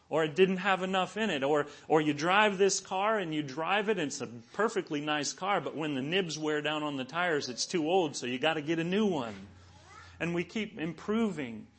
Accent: American